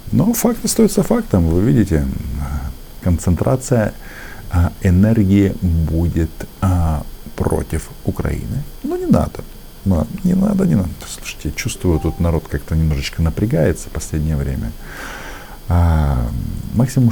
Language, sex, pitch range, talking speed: Russian, male, 80-110 Hz, 105 wpm